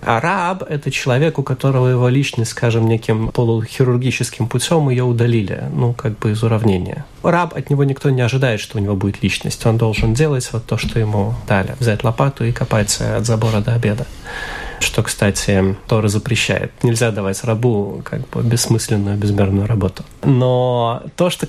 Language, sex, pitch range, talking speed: Russian, male, 115-145 Hz, 170 wpm